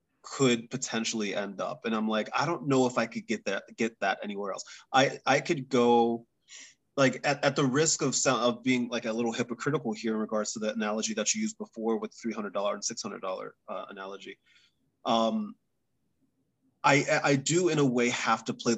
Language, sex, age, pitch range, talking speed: English, male, 20-39, 110-130 Hz, 200 wpm